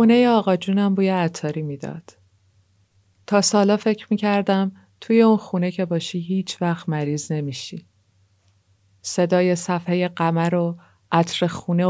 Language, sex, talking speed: Persian, female, 120 wpm